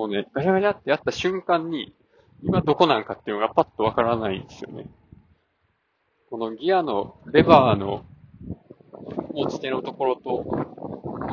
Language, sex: Japanese, male